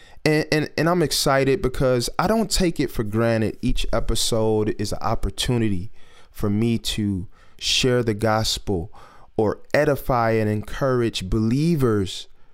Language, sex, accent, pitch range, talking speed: English, male, American, 105-135 Hz, 135 wpm